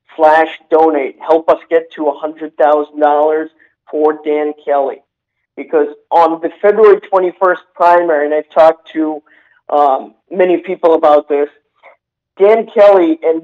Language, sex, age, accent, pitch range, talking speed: English, male, 50-69, American, 160-185 Hz, 125 wpm